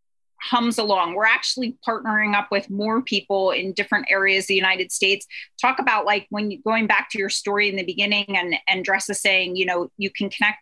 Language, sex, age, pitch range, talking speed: English, female, 30-49, 200-255 Hz, 215 wpm